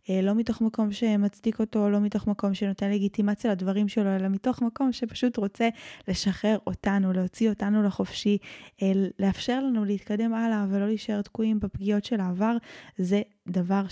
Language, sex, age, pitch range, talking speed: Hebrew, female, 10-29, 195-230 Hz, 145 wpm